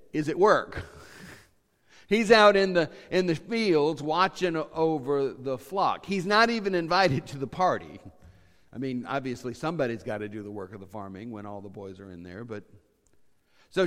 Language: English